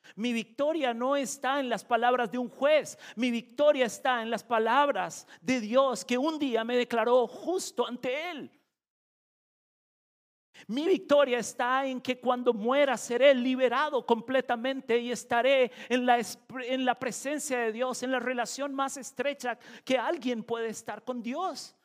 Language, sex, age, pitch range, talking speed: Spanish, male, 40-59, 230-275 Hz, 150 wpm